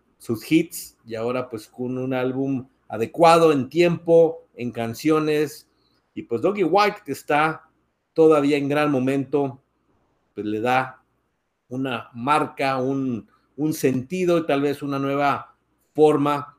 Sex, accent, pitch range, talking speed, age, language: male, Mexican, 125-160 Hz, 135 wpm, 50-69, Spanish